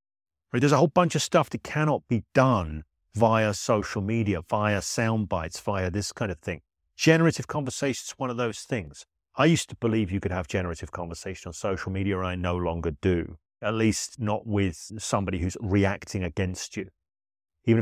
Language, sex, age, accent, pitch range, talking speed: English, male, 30-49, British, 85-110 Hz, 185 wpm